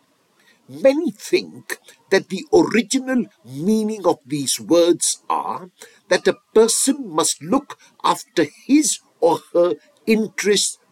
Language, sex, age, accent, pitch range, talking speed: English, male, 60-79, Indian, 170-285 Hz, 110 wpm